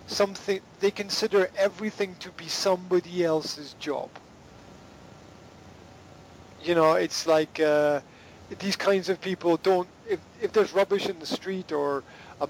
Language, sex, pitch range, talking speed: English, male, 150-190 Hz, 135 wpm